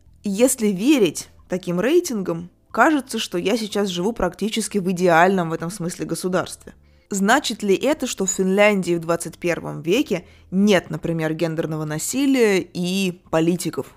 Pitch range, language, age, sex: 165-200 Hz, Russian, 20-39, female